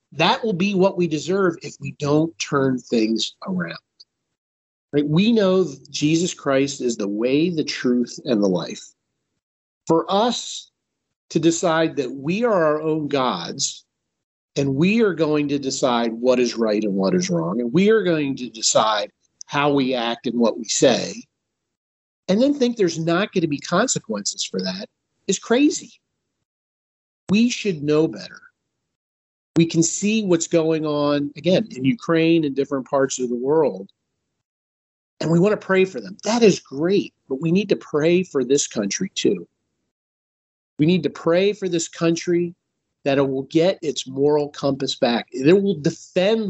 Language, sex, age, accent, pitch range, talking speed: English, male, 50-69, American, 135-185 Hz, 170 wpm